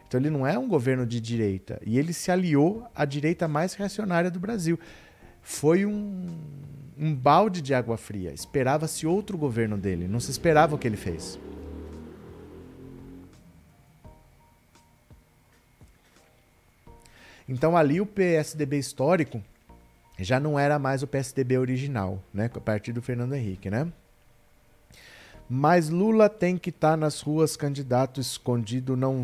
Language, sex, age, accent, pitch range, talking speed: Portuguese, male, 40-59, Brazilian, 120-155 Hz, 135 wpm